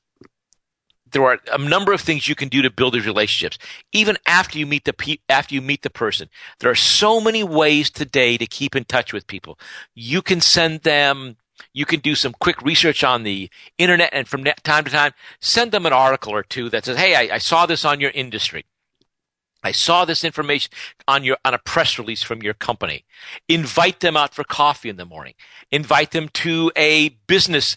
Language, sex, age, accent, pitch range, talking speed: English, male, 50-69, American, 120-165 Hz, 205 wpm